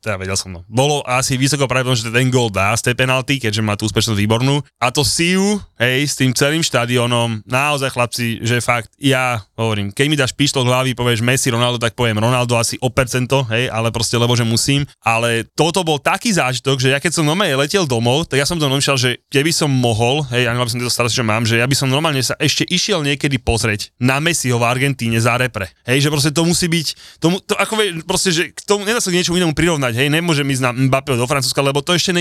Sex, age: male, 20-39